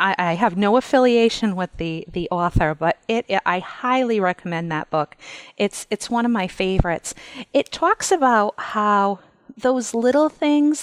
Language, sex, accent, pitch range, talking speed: English, female, American, 170-230 Hz, 155 wpm